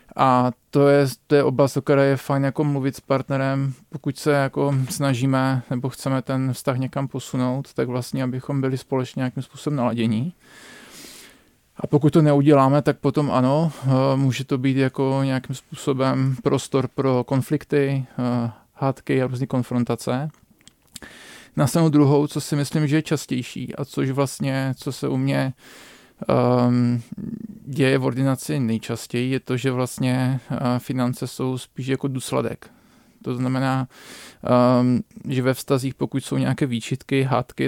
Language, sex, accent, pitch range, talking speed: Czech, male, native, 125-140 Hz, 145 wpm